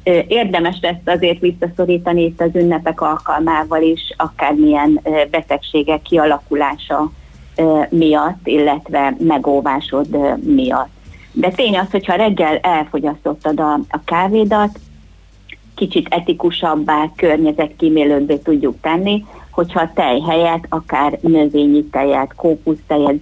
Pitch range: 150-175 Hz